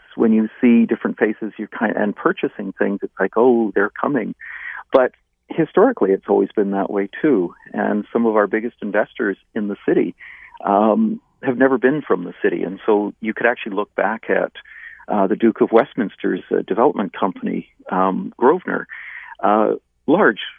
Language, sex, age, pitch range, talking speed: English, male, 50-69, 105-140 Hz, 175 wpm